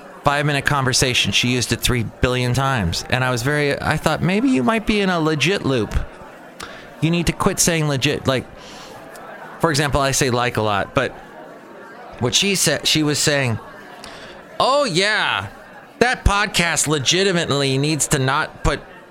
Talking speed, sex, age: 165 wpm, male, 30-49